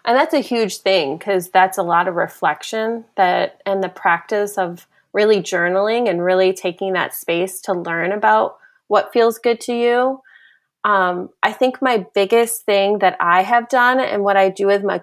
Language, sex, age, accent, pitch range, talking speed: English, female, 20-39, American, 190-230 Hz, 190 wpm